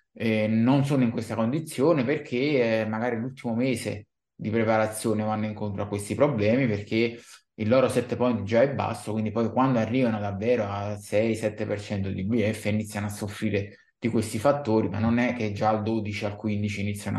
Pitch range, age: 110-125 Hz, 20-39